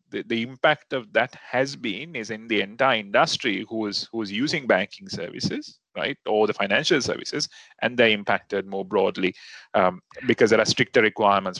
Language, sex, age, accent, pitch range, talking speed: English, male, 30-49, Indian, 105-135 Hz, 180 wpm